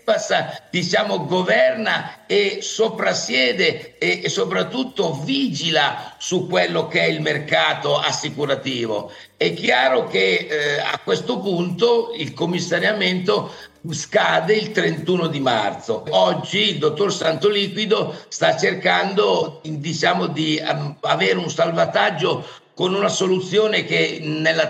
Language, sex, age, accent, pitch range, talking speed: Italian, male, 50-69, native, 165-215 Hz, 110 wpm